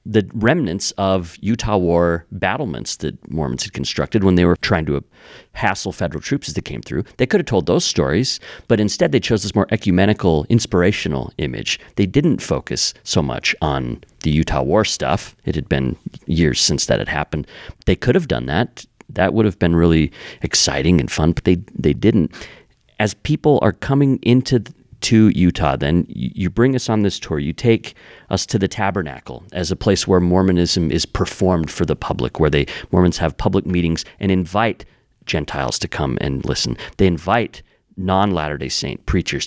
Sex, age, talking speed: male, 40-59, 185 wpm